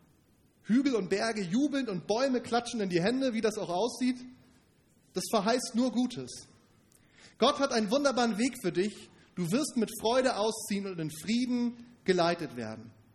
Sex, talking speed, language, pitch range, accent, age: male, 160 wpm, German, 165-240 Hz, German, 30-49